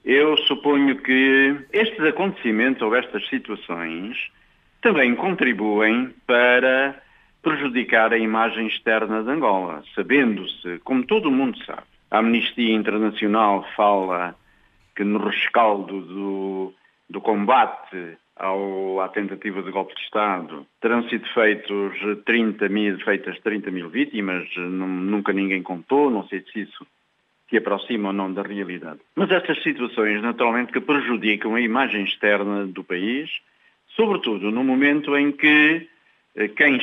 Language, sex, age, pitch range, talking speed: Portuguese, male, 50-69, 100-130 Hz, 120 wpm